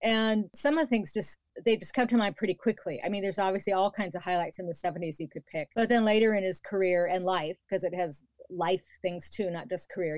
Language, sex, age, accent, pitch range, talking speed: English, female, 40-59, American, 175-215 Hz, 260 wpm